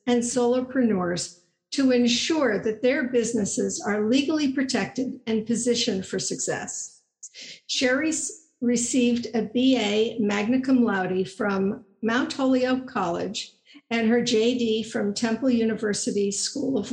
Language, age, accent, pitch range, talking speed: English, 50-69, American, 215-255 Hz, 115 wpm